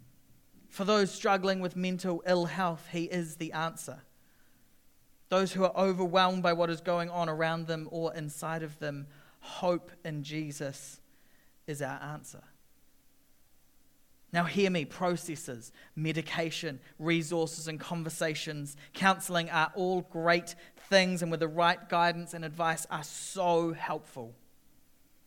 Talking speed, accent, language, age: 130 wpm, Australian, English, 30-49